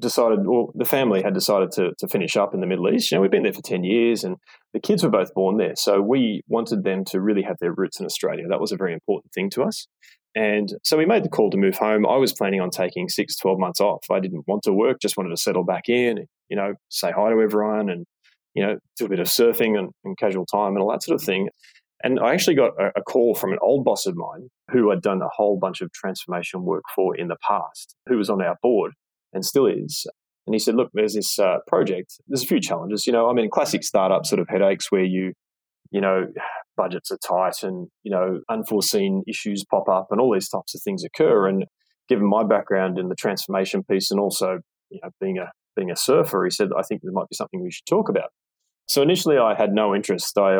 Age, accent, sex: 20-39, Australian, male